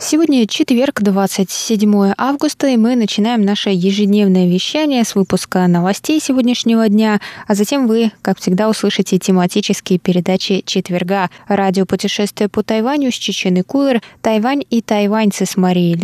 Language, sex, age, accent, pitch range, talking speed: Russian, female, 20-39, native, 185-225 Hz, 135 wpm